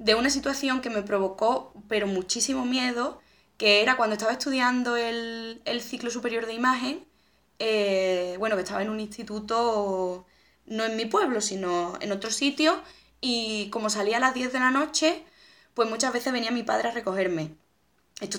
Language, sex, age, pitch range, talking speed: Spanish, female, 10-29, 205-265 Hz, 175 wpm